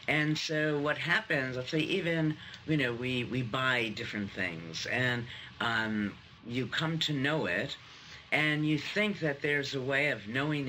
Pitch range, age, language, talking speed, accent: 120-155 Hz, 50-69, English, 170 wpm, American